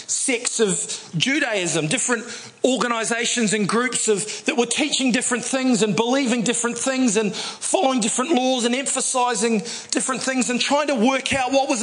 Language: English